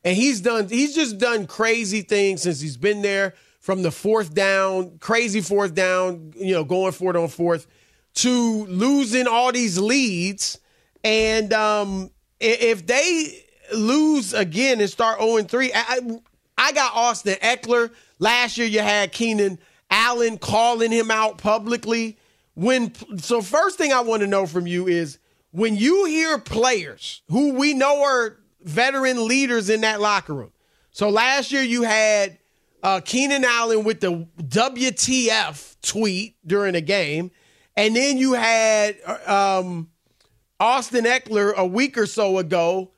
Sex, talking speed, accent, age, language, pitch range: male, 150 wpm, American, 30-49, English, 190-240 Hz